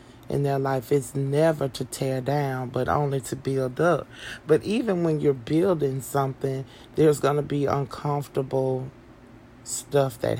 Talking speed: 150 wpm